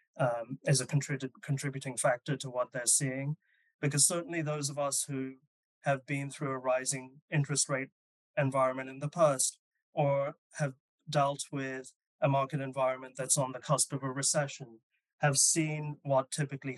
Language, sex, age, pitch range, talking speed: English, male, 30-49, 130-150 Hz, 155 wpm